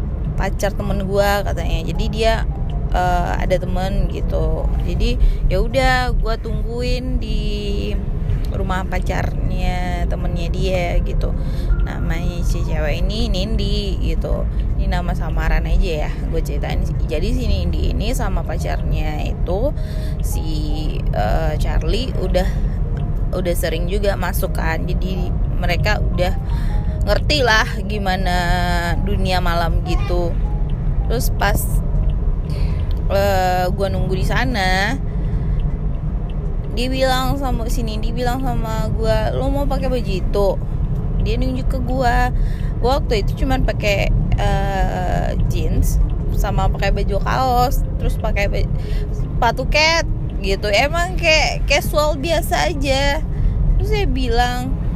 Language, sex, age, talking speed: Indonesian, female, 20-39, 110 wpm